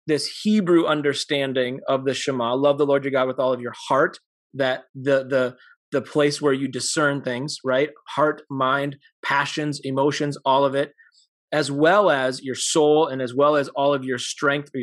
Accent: American